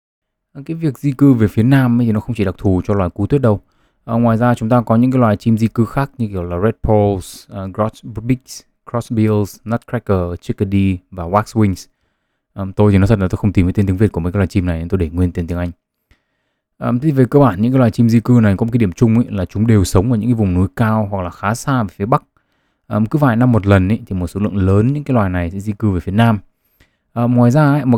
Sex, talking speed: male, 280 wpm